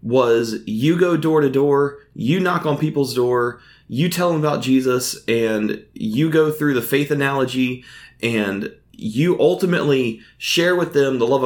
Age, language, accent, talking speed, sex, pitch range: 20-39, English, American, 160 wpm, male, 125-165 Hz